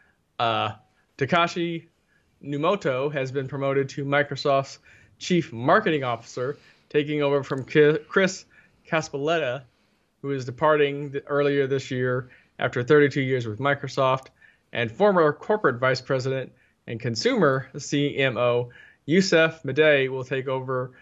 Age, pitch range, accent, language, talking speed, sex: 20-39, 125-150 Hz, American, English, 120 wpm, male